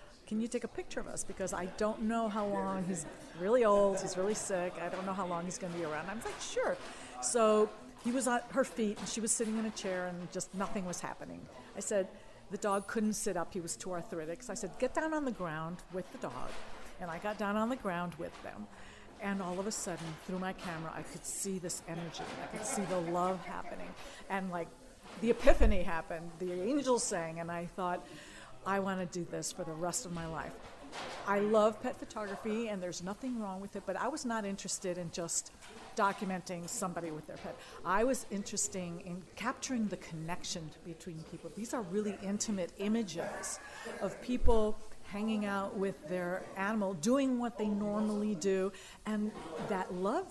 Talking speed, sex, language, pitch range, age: 205 wpm, female, English, 180-215 Hz, 50-69